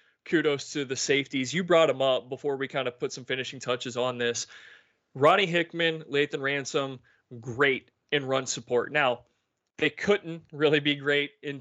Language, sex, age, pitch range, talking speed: English, male, 20-39, 130-150 Hz, 170 wpm